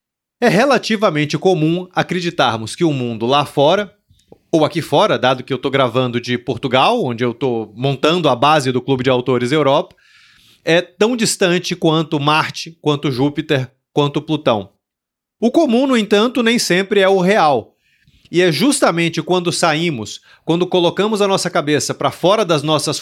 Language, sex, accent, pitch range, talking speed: Portuguese, male, Brazilian, 140-190 Hz, 160 wpm